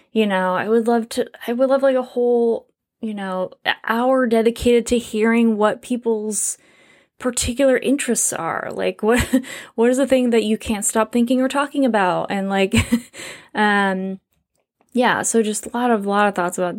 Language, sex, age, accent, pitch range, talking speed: English, female, 10-29, American, 195-245 Hz, 180 wpm